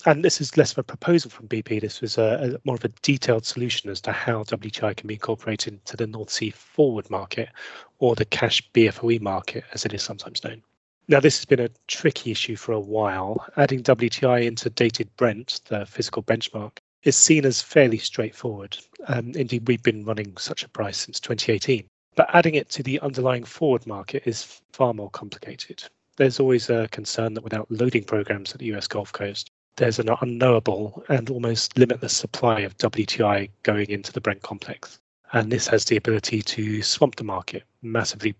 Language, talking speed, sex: English, 190 wpm, male